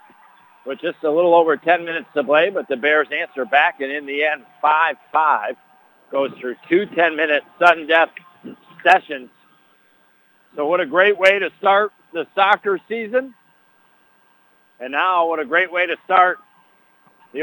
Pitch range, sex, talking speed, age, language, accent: 155-205 Hz, male, 150 wpm, 60-79, English, American